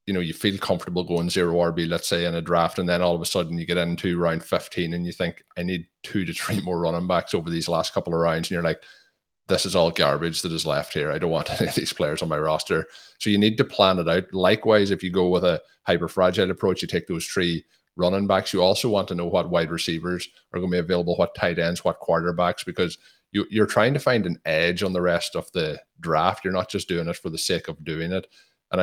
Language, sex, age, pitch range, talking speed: English, male, 30-49, 85-90 Hz, 265 wpm